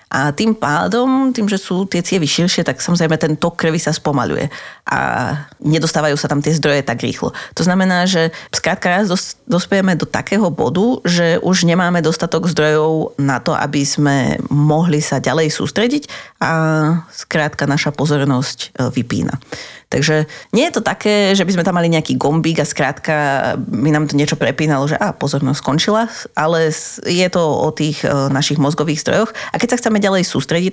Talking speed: 170 wpm